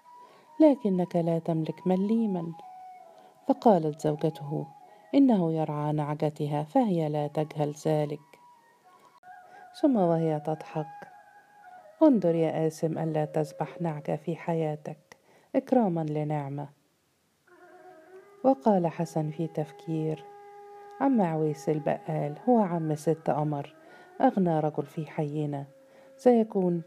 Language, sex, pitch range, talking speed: Arabic, female, 155-255 Hz, 95 wpm